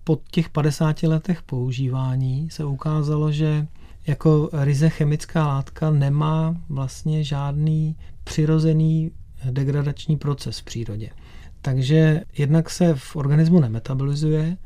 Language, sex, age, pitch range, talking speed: Czech, male, 30-49, 135-155 Hz, 105 wpm